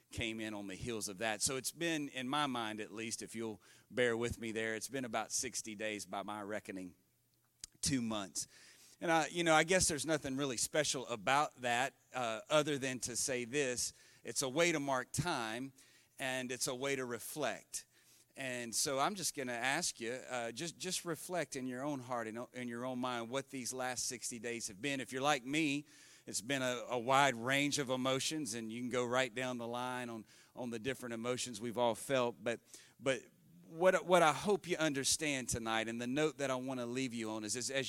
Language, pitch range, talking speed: English, 120-150 Hz, 220 wpm